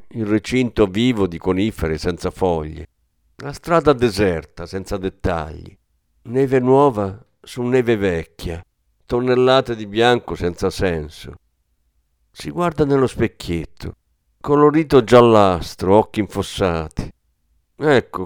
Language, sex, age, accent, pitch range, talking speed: Italian, male, 50-69, native, 85-130 Hz, 100 wpm